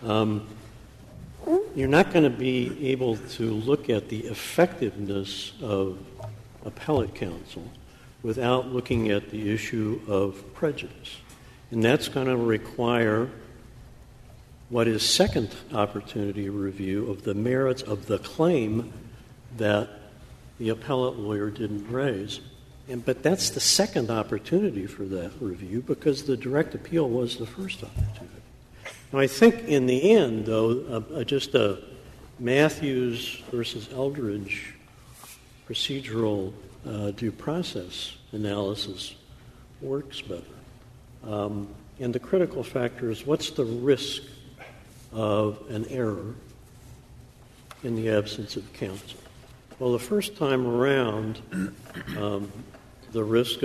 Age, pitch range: 60-79, 105-130 Hz